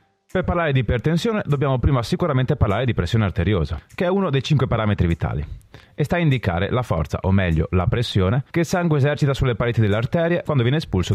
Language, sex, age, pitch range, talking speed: Italian, male, 30-49, 95-135 Hz, 205 wpm